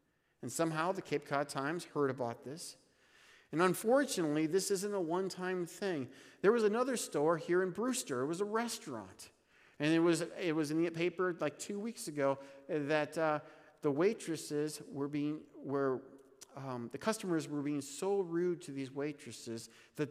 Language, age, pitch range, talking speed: English, 50-69, 135-175 Hz, 170 wpm